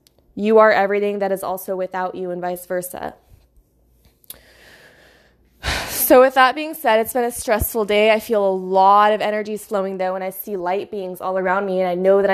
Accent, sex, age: American, female, 20-39